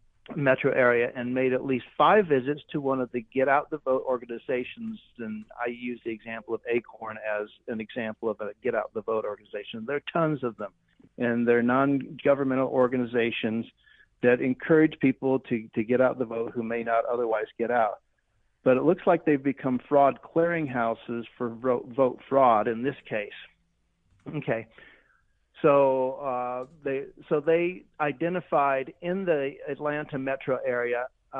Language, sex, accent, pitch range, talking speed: English, male, American, 120-155 Hz, 165 wpm